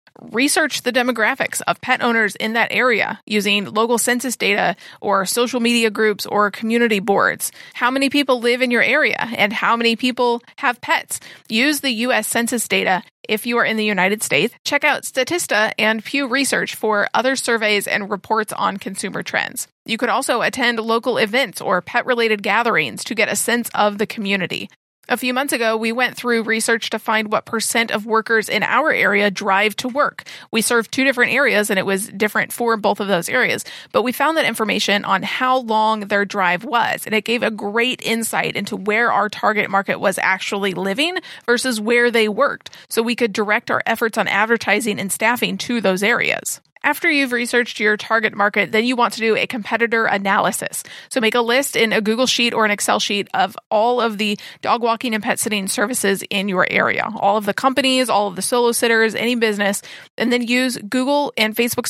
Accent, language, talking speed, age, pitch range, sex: American, English, 200 wpm, 30-49, 210-245 Hz, female